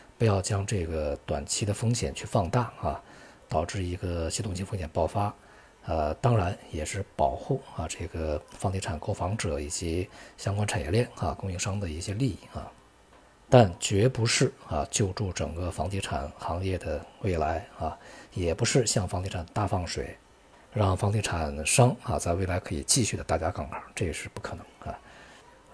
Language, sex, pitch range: Chinese, male, 90-115 Hz